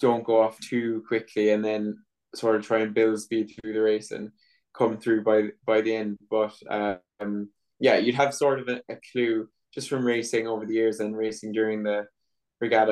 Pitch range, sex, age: 110-120 Hz, male, 20-39